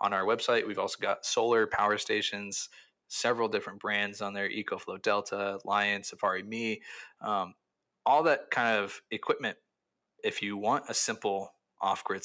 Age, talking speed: 20-39, 150 wpm